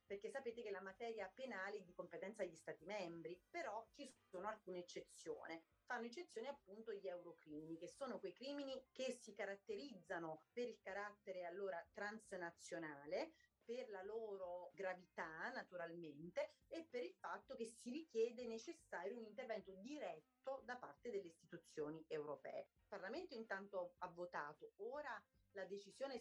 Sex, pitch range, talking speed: female, 180-235 Hz, 145 wpm